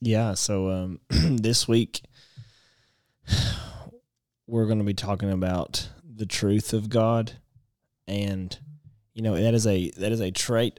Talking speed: 140 wpm